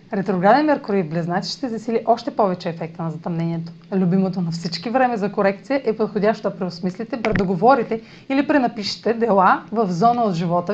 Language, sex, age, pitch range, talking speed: Bulgarian, female, 30-49, 175-230 Hz, 155 wpm